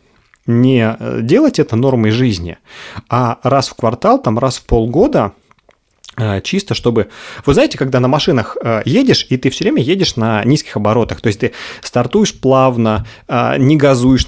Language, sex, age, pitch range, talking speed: Russian, male, 30-49, 110-135 Hz, 150 wpm